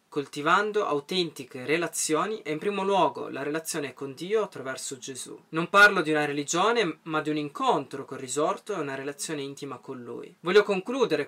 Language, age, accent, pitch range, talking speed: Italian, 20-39, native, 140-175 Hz, 170 wpm